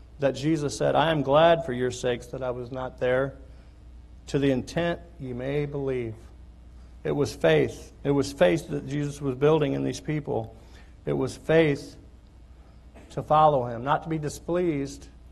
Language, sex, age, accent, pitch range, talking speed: English, male, 50-69, American, 120-155 Hz, 170 wpm